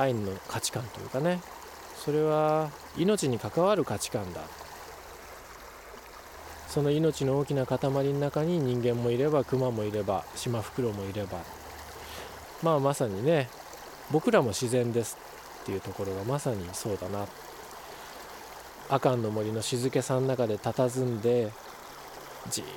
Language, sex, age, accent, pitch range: Japanese, male, 20-39, native, 115-155 Hz